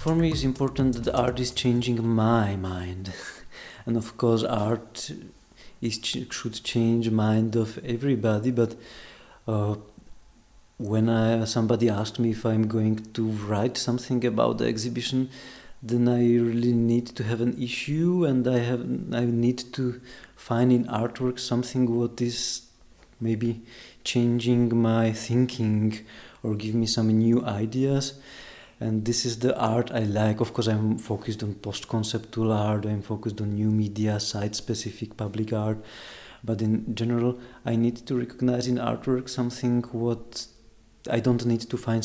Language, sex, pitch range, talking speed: German, male, 110-125 Hz, 150 wpm